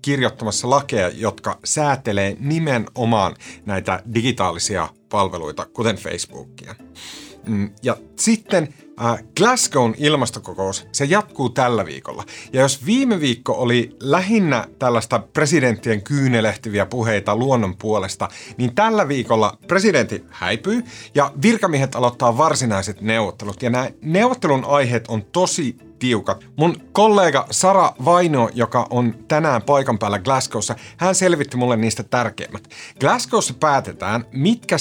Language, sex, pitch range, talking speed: Finnish, male, 110-155 Hz, 115 wpm